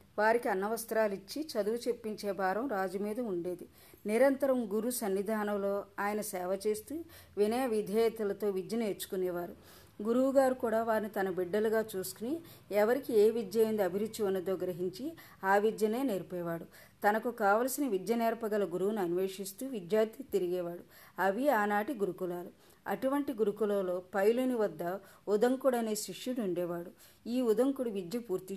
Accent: native